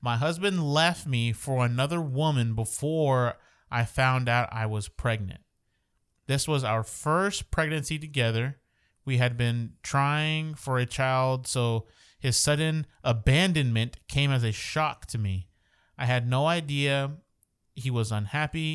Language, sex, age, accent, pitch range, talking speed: English, male, 30-49, American, 110-135 Hz, 140 wpm